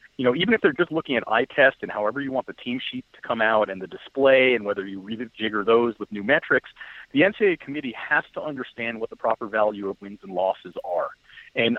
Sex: male